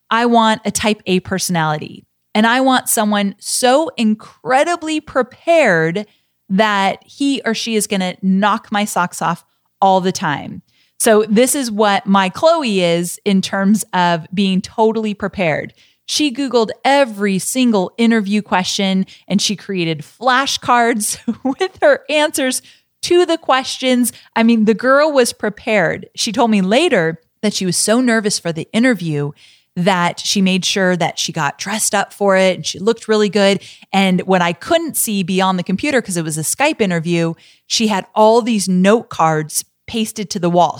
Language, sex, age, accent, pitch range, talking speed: English, female, 30-49, American, 185-235 Hz, 170 wpm